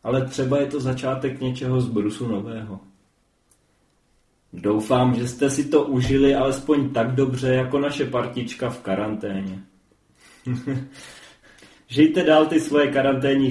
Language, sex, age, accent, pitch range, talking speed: Czech, male, 20-39, native, 110-145 Hz, 120 wpm